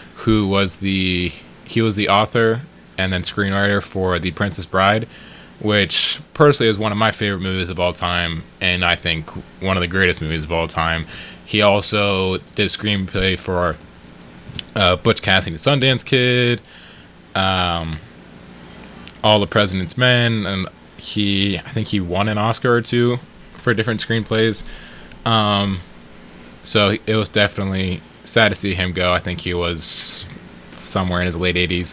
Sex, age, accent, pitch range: male, 20-39, American, 85-110 Hz